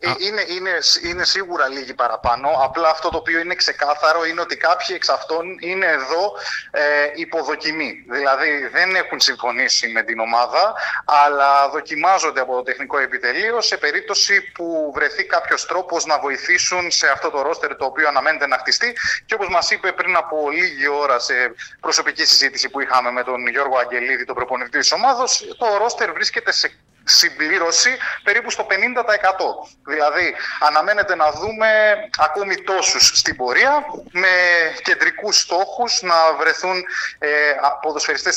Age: 30-49